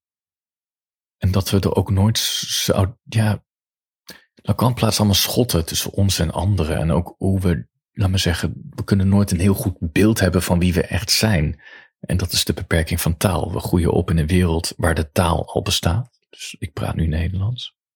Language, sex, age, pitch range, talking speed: Dutch, male, 40-59, 90-115 Hz, 195 wpm